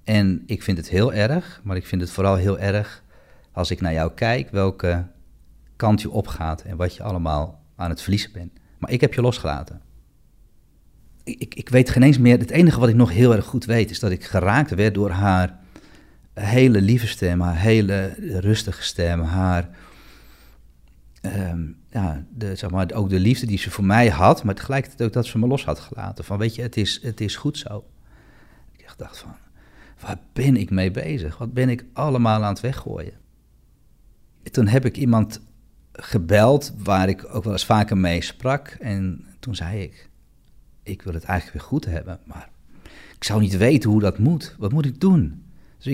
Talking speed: 195 wpm